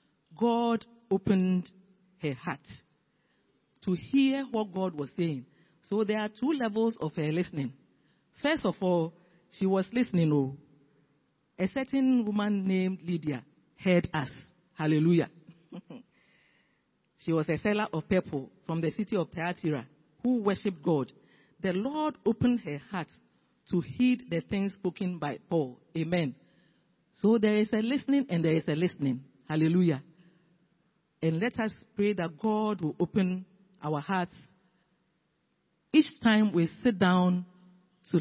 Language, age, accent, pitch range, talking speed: English, 50-69, Nigerian, 160-205 Hz, 135 wpm